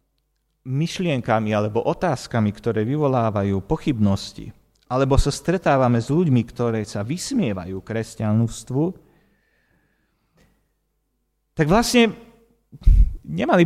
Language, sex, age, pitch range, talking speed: Slovak, male, 40-59, 110-170 Hz, 80 wpm